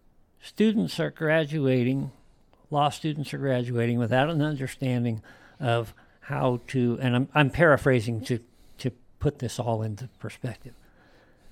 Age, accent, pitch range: 60-79, American, 120-150 Hz